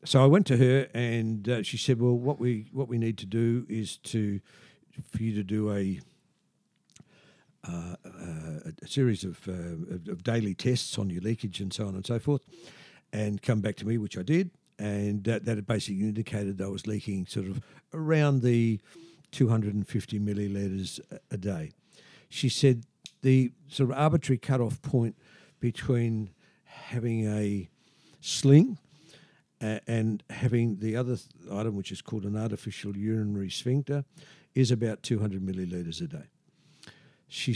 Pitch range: 100-130 Hz